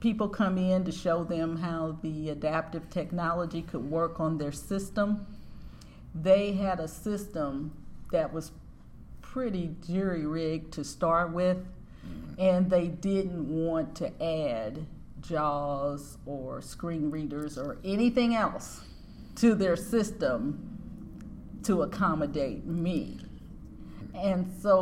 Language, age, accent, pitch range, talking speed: English, 40-59, American, 155-185 Hz, 115 wpm